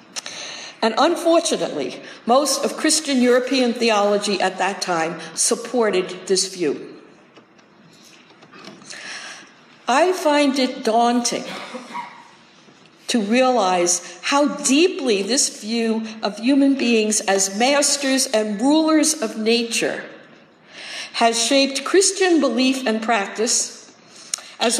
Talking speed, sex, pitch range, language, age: 95 wpm, female, 215-280 Hz, English, 60-79